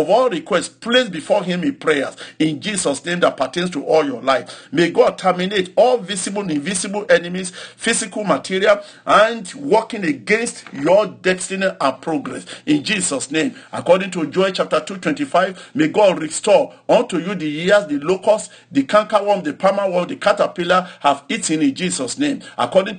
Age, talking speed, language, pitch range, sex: 50-69, 165 wpm, English, 165-225 Hz, male